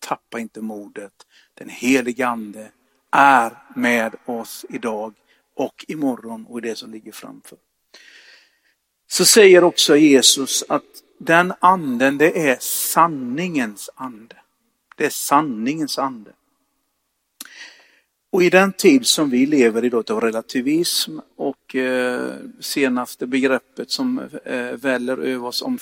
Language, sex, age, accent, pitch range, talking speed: Swedish, male, 50-69, native, 115-185 Hz, 115 wpm